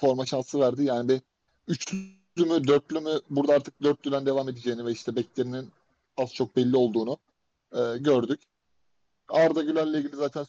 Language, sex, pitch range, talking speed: Turkish, male, 130-150 Hz, 155 wpm